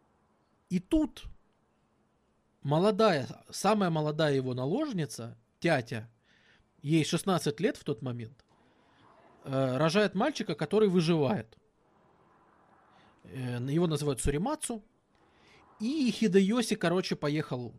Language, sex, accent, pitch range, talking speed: Russian, male, native, 130-190 Hz, 85 wpm